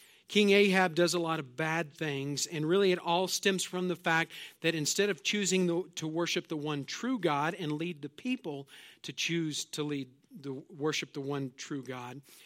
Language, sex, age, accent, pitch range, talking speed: English, male, 40-59, American, 145-180 Hz, 195 wpm